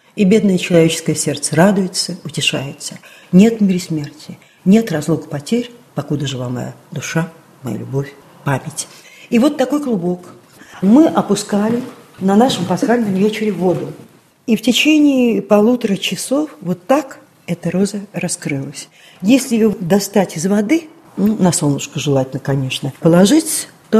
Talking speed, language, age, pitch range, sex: 135 wpm, Russian, 50-69, 160-225 Hz, female